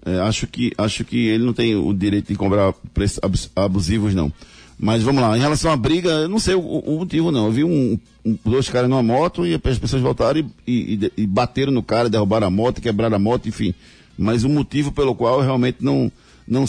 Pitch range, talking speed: 100-130 Hz, 210 wpm